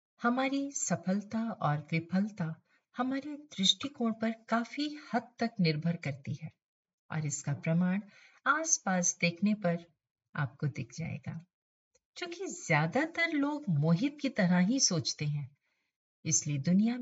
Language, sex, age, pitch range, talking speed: Hindi, female, 50-69, 150-210 Hz, 115 wpm